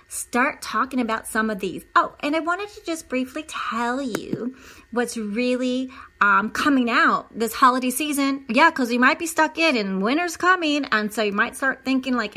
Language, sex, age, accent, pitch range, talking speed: English, female, 30-49, American, 205-265 Hz, 195 wpm